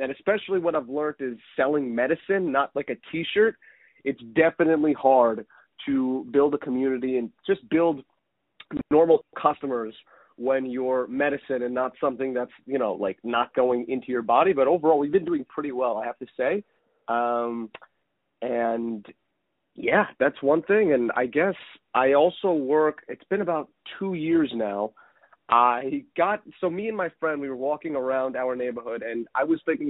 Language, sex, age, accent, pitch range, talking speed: English, male, 30-49, American, 130-165 Hz, 170 wpm